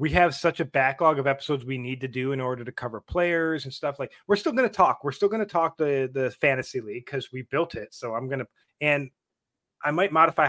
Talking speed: 240 wpm